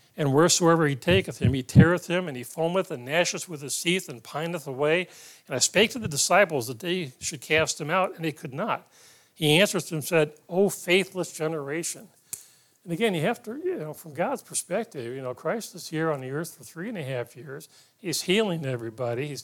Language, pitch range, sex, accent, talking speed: English, 135-175 Hz, male, American, 220 wpm